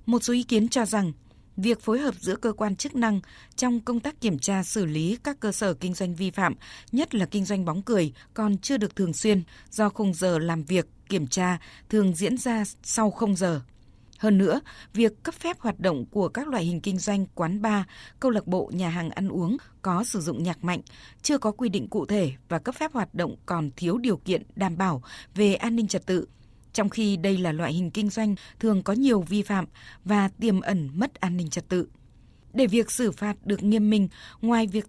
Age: 20-39